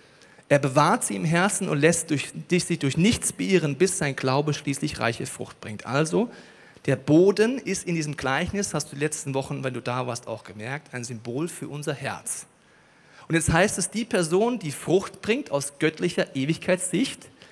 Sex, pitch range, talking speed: male, 135-175 Hz, 180 wpm